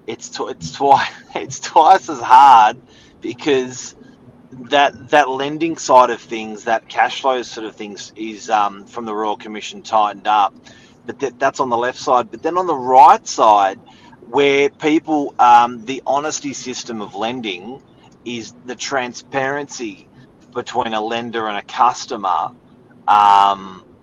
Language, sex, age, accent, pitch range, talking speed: English, male, 30-49, Australian, 115-140 Hz, 145 wpm